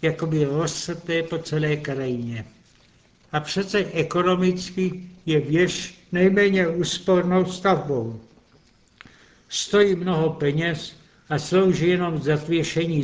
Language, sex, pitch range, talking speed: Czech, male, 145-175 Hz, 95 wpm